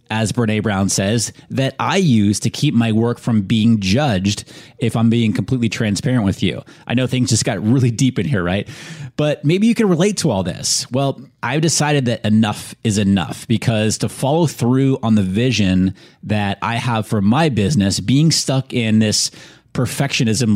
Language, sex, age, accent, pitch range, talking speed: English, male, 30-49, American, 110-135 Hz, 185 wpm